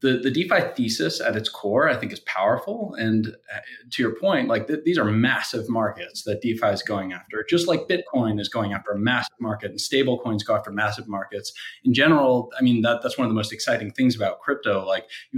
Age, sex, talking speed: 20-39, male, 225 wpm